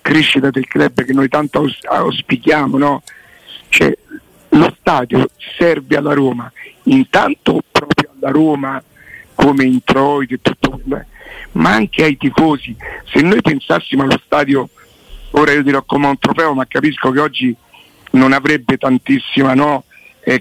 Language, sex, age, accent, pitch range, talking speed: Italian, male, 50-69, native, 140-185 Hz, 140 wpm